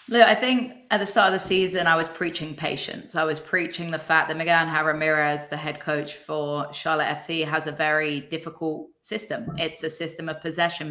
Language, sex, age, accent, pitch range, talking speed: English, female, 20-39, British, 155-180 Hz, 210 wpm